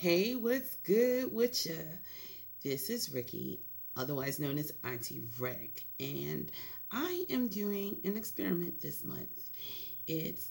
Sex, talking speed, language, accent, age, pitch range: female, 125 wpm, English, American, 30-49, 145-175 Hz